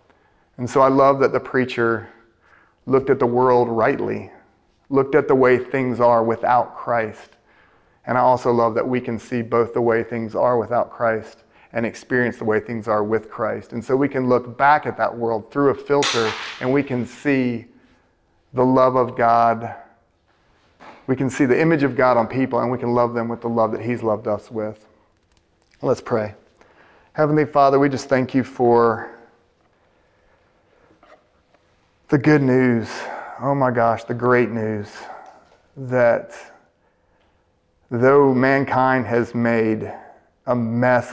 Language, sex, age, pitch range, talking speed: English, male, 30-49, 110-130 Hz, 160 wpm